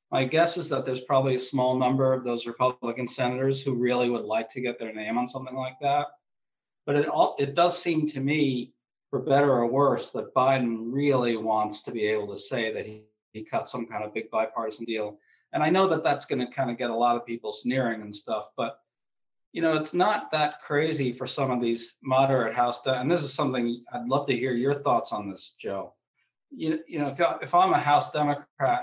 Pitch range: 115-140 Hz